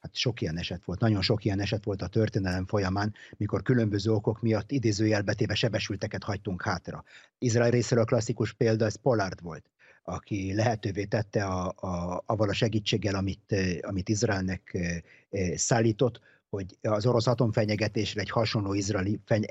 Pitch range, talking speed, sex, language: 100-120 Hz, 150 wpm, male, Hungarian